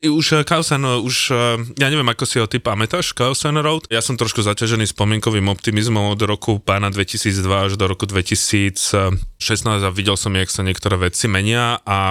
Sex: male